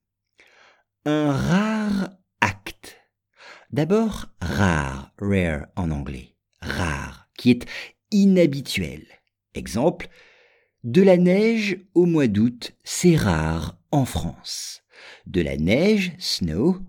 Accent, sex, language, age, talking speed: French, male, English, 50-69, 95 wpm